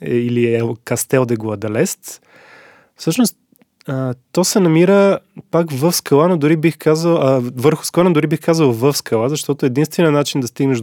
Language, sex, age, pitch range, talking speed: Bulgarian, male, 20-39, 125-155 Hz, 170 wpm